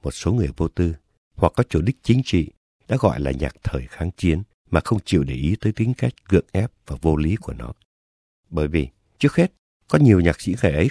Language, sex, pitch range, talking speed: English, male, 75-110 Hz, 235 wpm